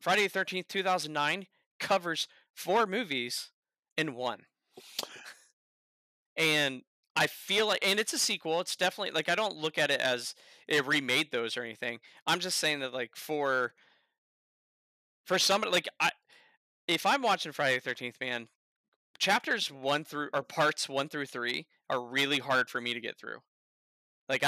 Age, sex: 20-39, male